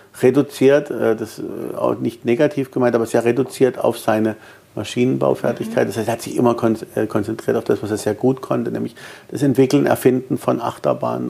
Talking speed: 170 wpm